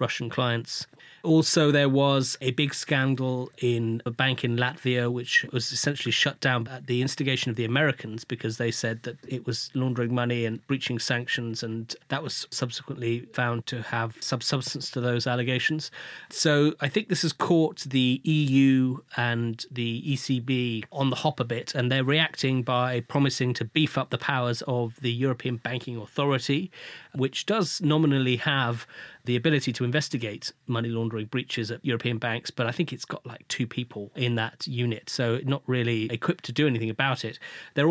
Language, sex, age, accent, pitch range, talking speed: English, male, 30-49, British, 120-140 Hz, 175 wpm